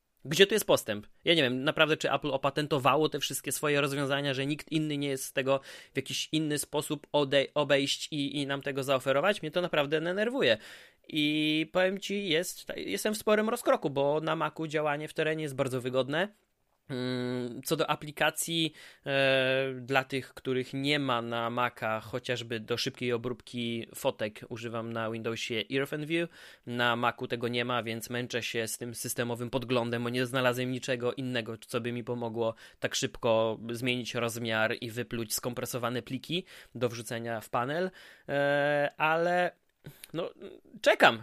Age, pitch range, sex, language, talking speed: 20-39, 120-150 Hz, male, Polish, 155 wpm